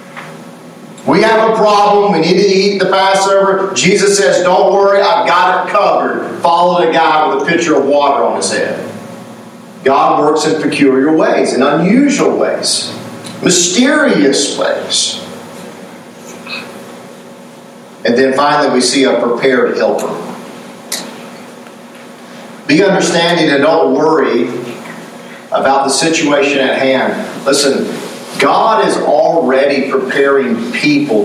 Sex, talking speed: male, 120 wpm